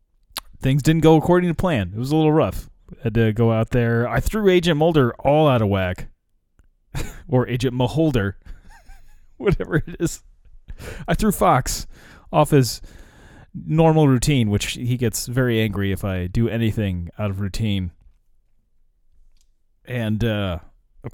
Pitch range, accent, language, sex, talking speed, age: 95-120 Hz, American, English, male, 150 wpm, 30-49